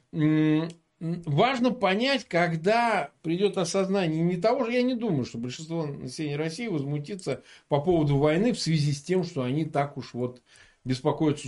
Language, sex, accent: Russian, male, native